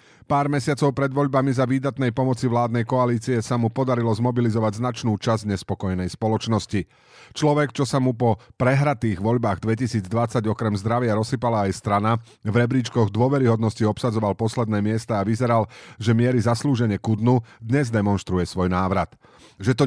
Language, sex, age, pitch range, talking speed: Slovak, male, 40-59, 105-130 Hz, 150 wpm